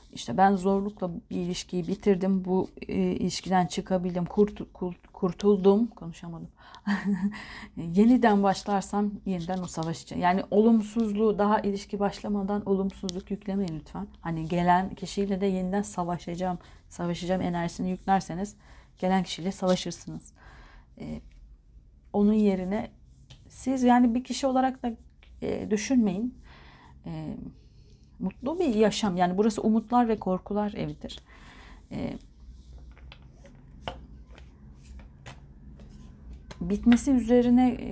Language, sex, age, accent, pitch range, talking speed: Turkish, female, 40-59, native, 170-210 Hz, 100 wpm